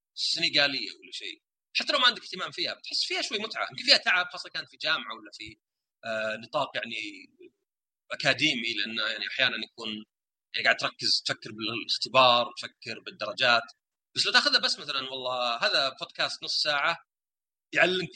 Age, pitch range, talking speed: 30-49, 125-215 Hz, 155 wpm